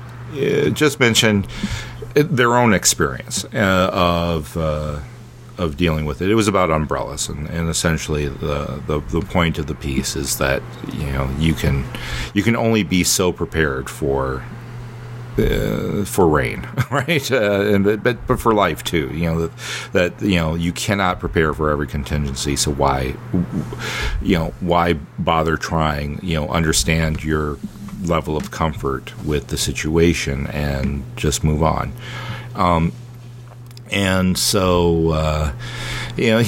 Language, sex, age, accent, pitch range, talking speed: English, male, 40-59, American, 75-105 Hz, 150 wpm